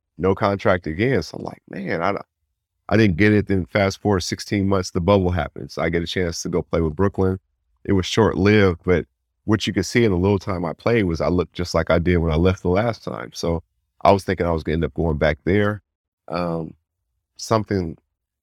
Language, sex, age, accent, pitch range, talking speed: English, male, 30-49, American, 80-95 Hz, 230 wpm